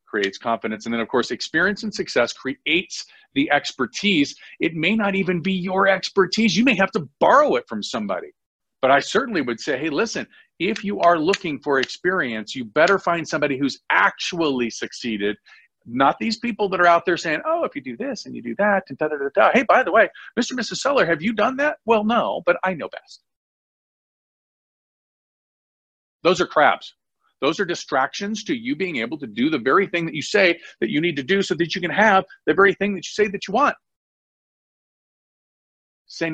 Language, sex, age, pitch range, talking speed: English, male, 40-59, 175-220 Hz, 205 wpm